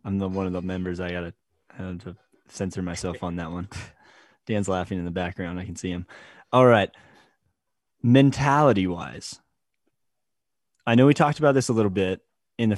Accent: American